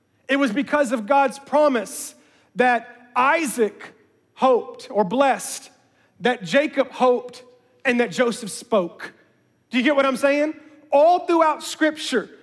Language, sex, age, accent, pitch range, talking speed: English, male, 40-59, American, 210-280 Hz, 130 wpm